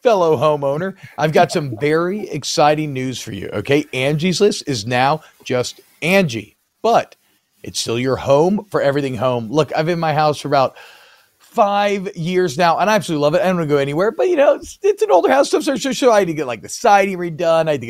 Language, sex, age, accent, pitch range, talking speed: English, male, 40-59, American, 135-180 Hz, 230 wpm